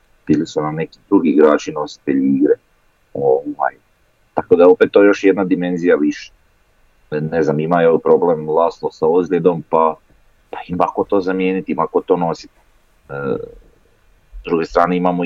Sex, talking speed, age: male, 155 wpm, 30-49